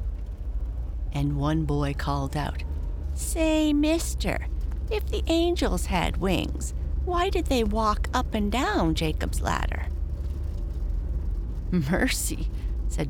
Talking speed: 105 wpm